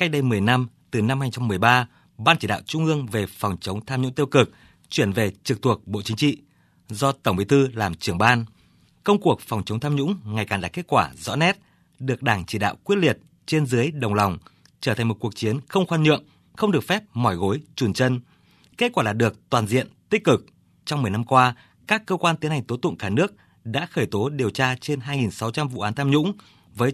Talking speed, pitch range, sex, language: 230 wpm, 110-150 Hz, male, Vietnamese